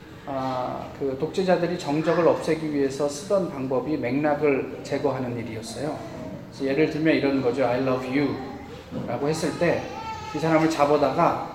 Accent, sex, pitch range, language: native, male, 130-180 Hz, Korean